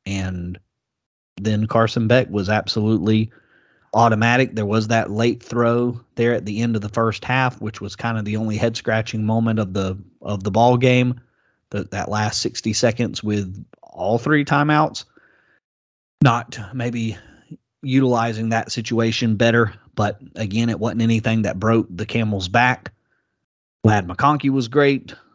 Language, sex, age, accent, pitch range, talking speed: English, male, 30-49, American, 105-125 Hz, 150 wpm